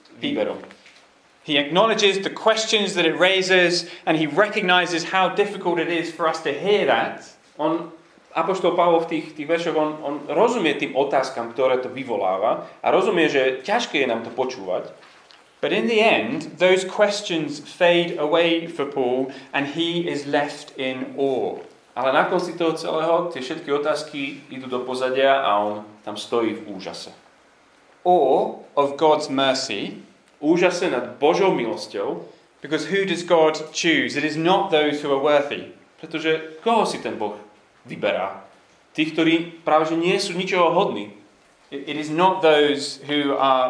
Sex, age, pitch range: male, 30-49, 135-170 Hz